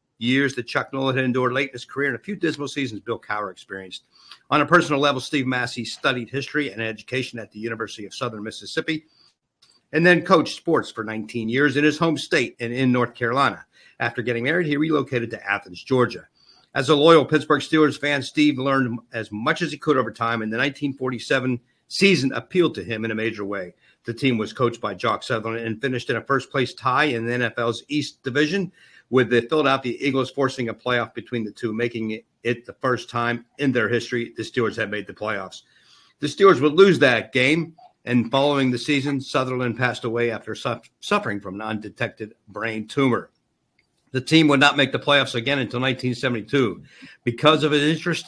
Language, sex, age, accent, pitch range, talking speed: English, male, 50-69, American, 115-145 Hz, 200 wpm